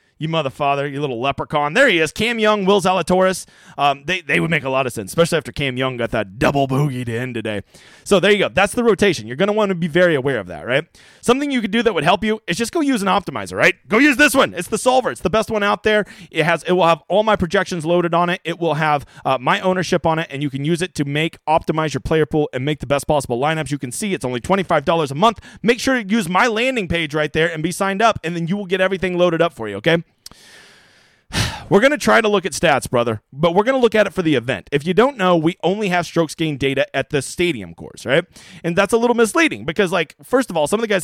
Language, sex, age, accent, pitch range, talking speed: English, male, 30-49, American, 145-205 Hz, 285 wpm